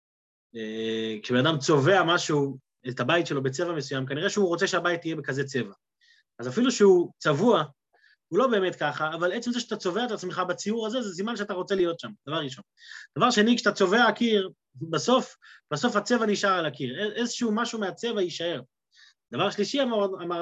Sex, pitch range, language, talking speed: male, 145-215 Hz, Hebrew, 175 wpm